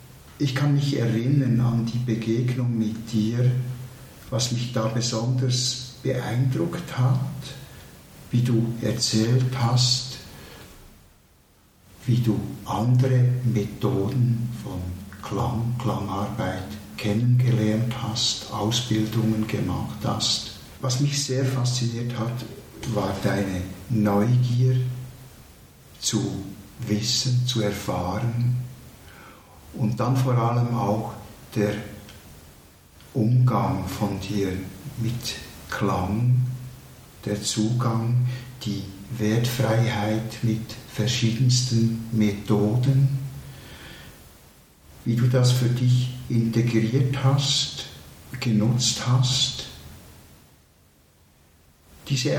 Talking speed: 80 wpm